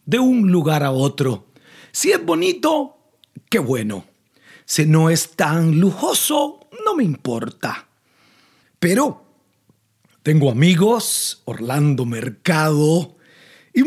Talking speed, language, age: 105 wpm, Spanish, 40-59